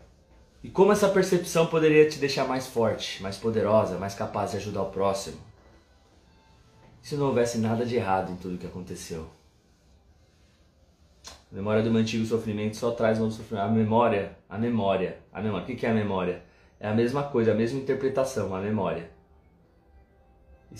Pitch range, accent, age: 95-120 Hz, Brazilian, 20-39